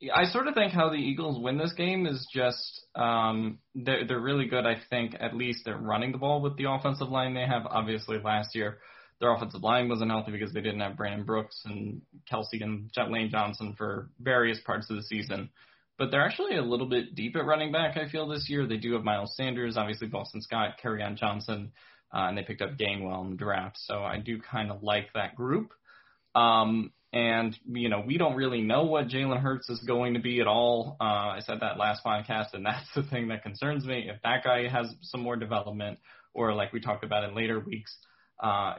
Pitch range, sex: 105-130 Hz, male